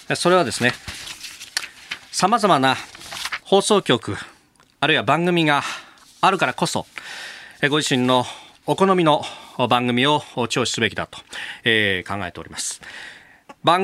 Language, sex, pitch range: Japanese, male, 110-150 Hz